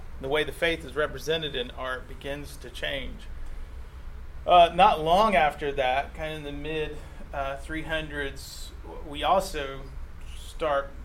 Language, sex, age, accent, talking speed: English, male, 30-49, American, 145 wpm